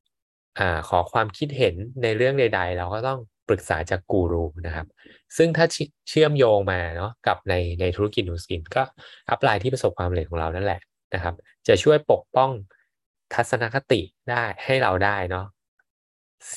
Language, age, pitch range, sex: Thai, 20-39, 90-125 Hz, male